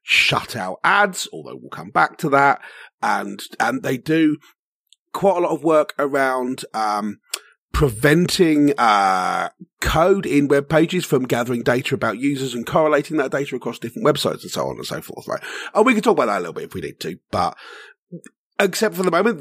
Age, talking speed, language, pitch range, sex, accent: 40-59, 195 wpm, English, 130-190 Hz, male, British